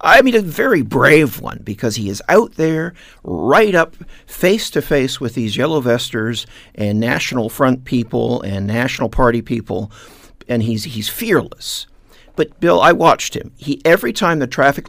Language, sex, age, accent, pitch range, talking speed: English, male, 50-69, American, 110-140 Hz, 170 wpm